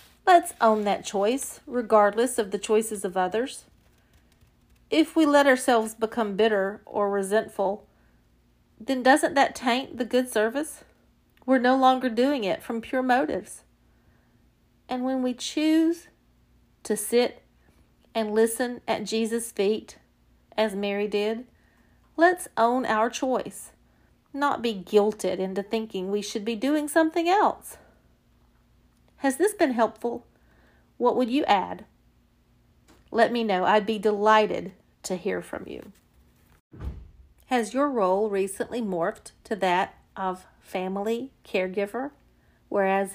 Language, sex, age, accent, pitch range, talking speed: English, female, 40-59, American, 200-260 Hz, 125 wpm